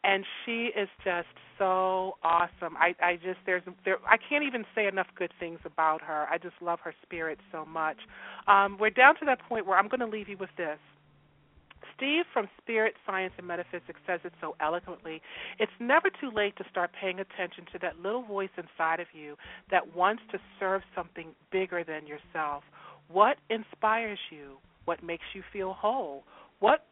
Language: English